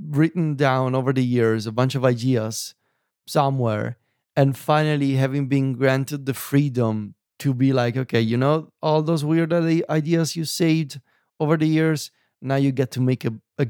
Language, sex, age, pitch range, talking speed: English, male, 30-49, 120-155 Hz, 170 wpm